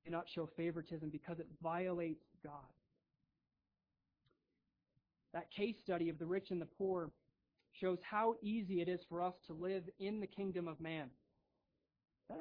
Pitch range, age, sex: 165-195 Hz, 30-49, male